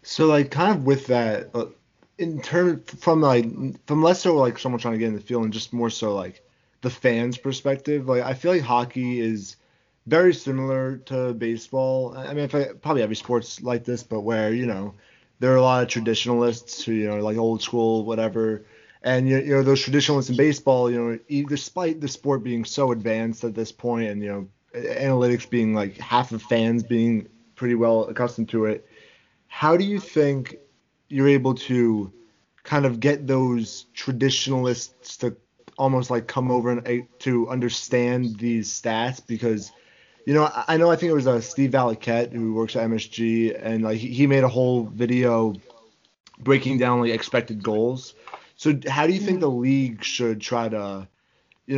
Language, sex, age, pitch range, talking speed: English, male, 30-49, 115-135 Hz, 185 wpm